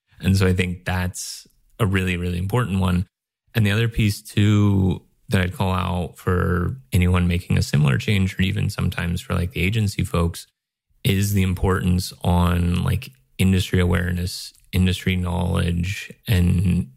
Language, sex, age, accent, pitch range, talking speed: English, male, 20-39, American, 90-100 Hz, 150 wpm